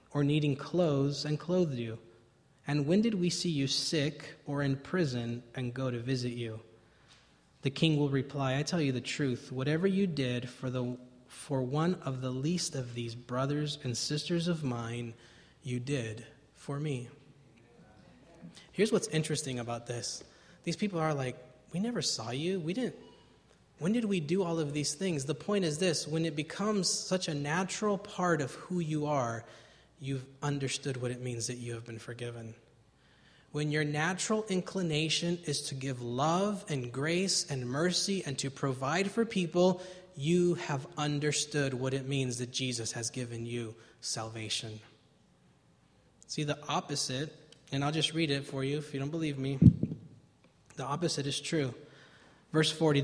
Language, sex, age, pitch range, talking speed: English, male, 20-39, 130-165 Hz, 170 wpm